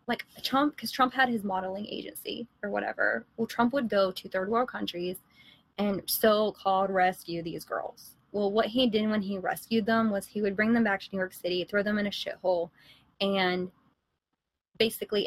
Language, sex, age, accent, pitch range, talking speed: English, female, 20-39, American, 185-215 Hz, 190 wpm